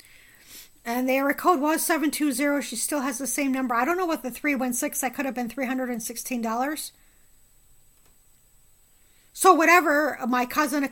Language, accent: English, American